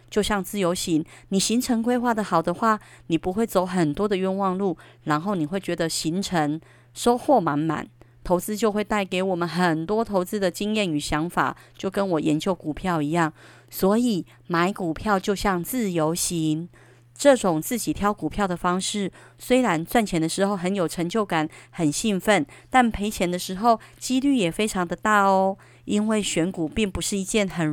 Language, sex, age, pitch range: Chinese, female, 30-49, 160-210 Hz